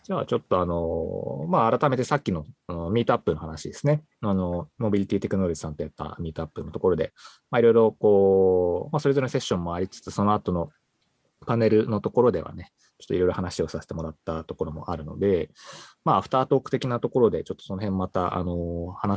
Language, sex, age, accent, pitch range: Japanese, male, 20-39, native, 85-115 Hz